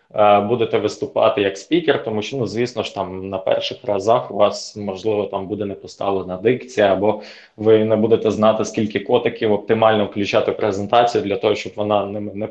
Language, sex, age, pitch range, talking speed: Ukrainian, male, 20-39, 105-125 Hz, 180 wpm